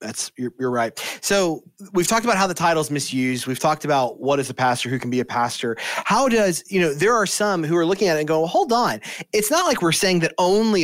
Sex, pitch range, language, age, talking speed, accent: male, 135-170 Hz, English, 30-49, 265 wpm, American